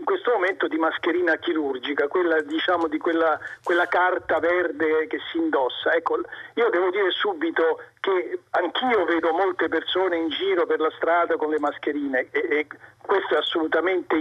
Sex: male